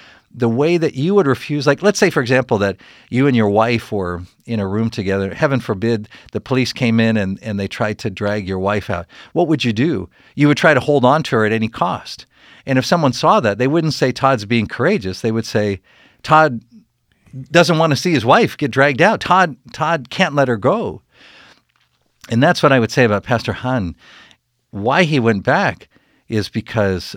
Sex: male